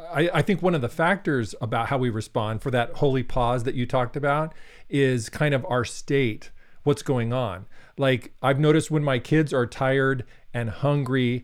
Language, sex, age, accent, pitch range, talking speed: English, male, 40-59, American, 115-140 Hz, 190 wpm